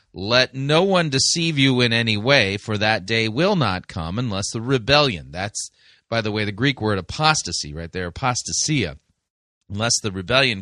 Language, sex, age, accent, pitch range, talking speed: English, male, 30-49, American, 105-135 Hz, 175 wpm